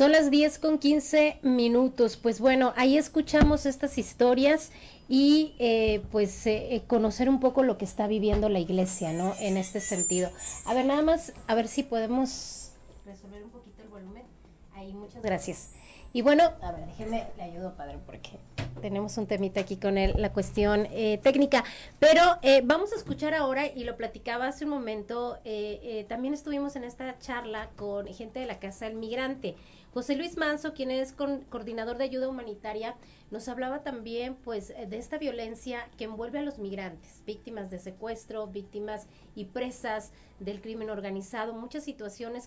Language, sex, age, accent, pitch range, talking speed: Spanish, female, 30-49, Mexican, 210-260 Hz, 175 wpm